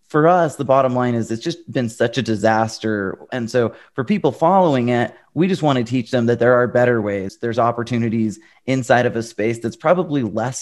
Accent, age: American, 30-49